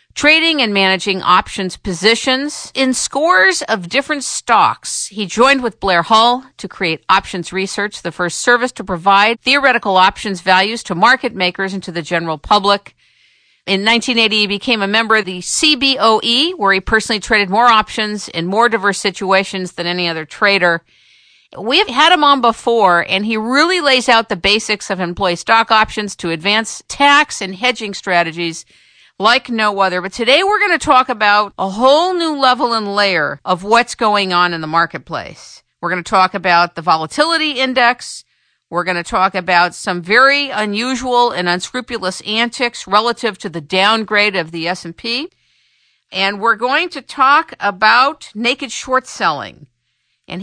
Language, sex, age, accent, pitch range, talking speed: English, female, 50-69, American, 185-245 Hz, 170 wpm